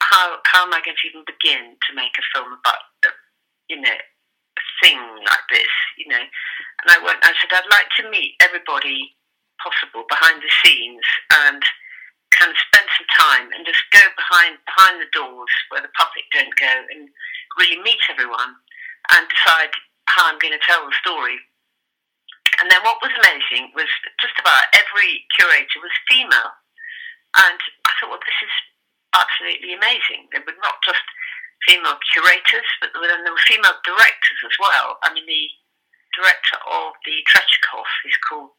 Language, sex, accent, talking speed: English, female, British, 170 wpm